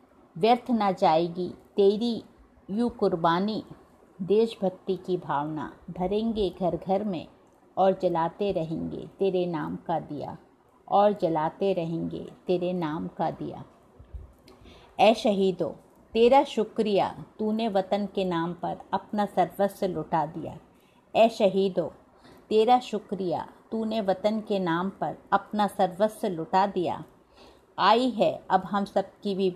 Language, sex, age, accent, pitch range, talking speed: Hindi, female, 50-69, native, 180-210 Hz, 120 wpm